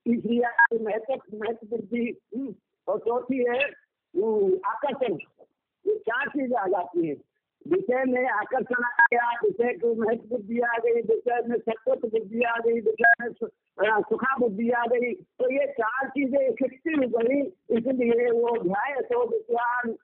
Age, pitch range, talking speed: 50-69, 230-255 Hz, 60 wpm